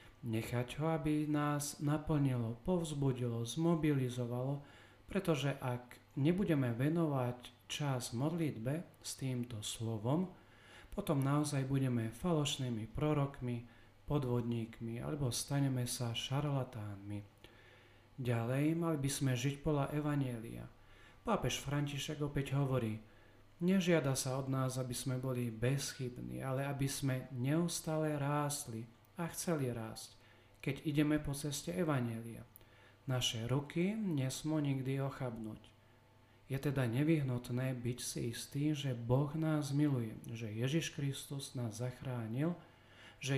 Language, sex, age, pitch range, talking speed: Slovak, male, 40-59, 120-145 Hz, 110 wpm